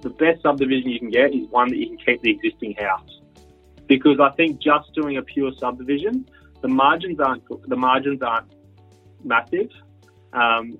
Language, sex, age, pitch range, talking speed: English, male, 30-49, 110-145 Hz, 170 wpm